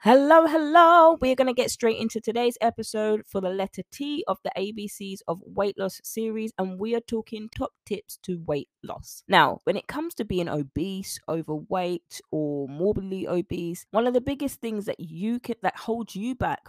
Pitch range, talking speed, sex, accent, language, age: 160-215 Hz, 190 wpm, female, British, English, 20-39